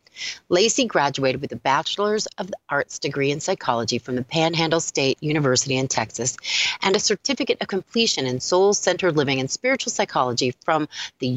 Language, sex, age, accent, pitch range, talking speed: English, female, 30-49, American, 130-180 Hz, 165 wpm